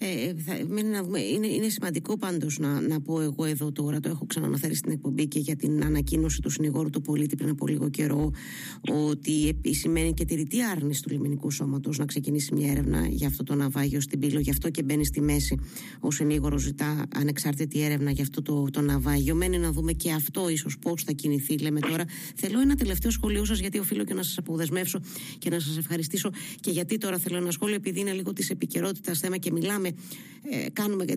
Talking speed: 205 wpm